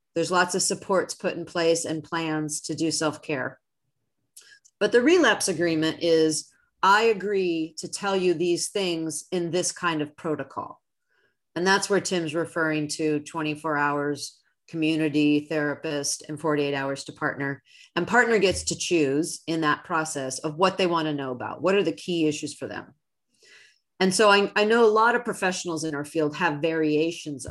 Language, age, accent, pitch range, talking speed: English, 40-59, American, 150-185 Hz, 170 wpm